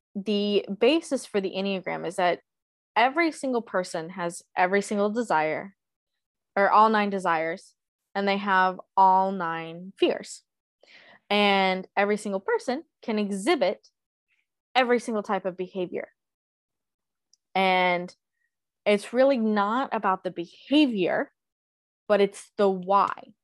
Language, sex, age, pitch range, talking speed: English, female, 20-39, 185-225 Hz, 120 wpm